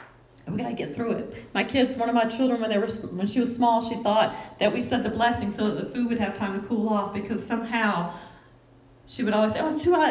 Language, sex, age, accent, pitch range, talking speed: English, female, 30-49, American, 215-270 Hz, 265 wpm